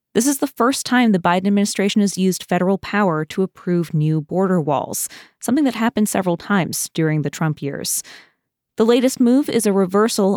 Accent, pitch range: American, 170-215 Hz